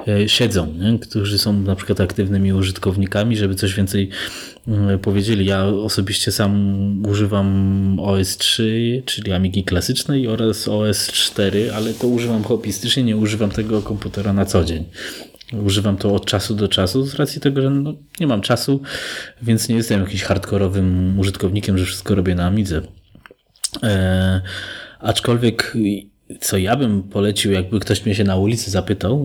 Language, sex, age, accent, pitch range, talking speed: Polish, male, 20-39, native, 95-110 Hz, 145 wpm